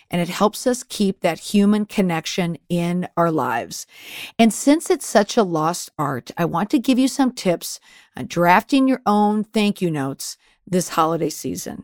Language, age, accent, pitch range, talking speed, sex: English, 40-59, American, 170-215 Hz, 175 wpm, female